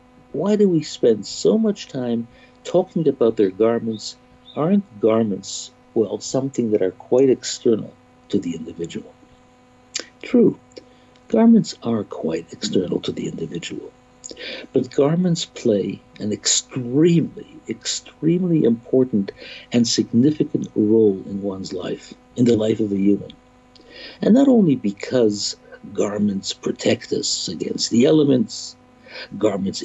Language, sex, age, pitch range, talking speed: English, male, 60-79, 110-150 Hz, 120 wpm